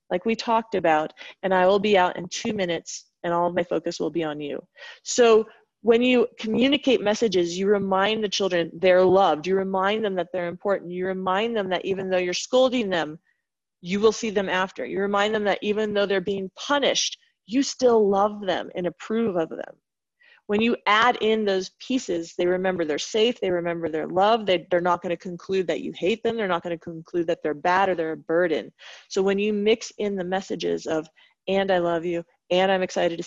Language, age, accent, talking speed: English, 30-49, American, 215 wpm